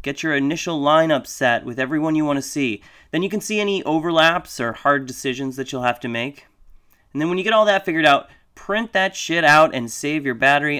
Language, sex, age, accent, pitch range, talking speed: English, male, 30-49, American, 110-140 Hz, 235 wpm